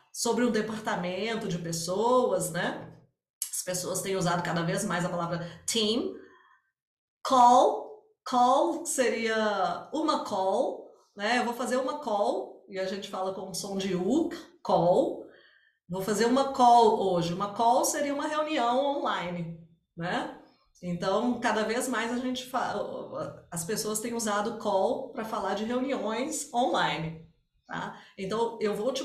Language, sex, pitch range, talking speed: Portuguese, female, 185-270 Hz, 145 wpm